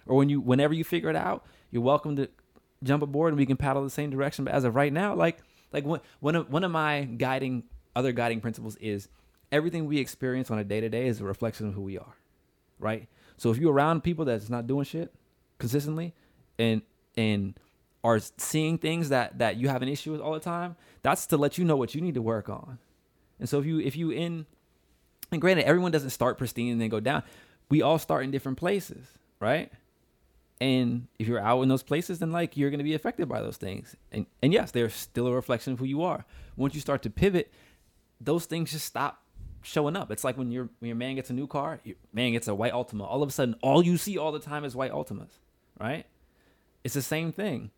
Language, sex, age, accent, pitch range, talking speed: English, male, 20-39, American, 120-155 Hz, 230 wpm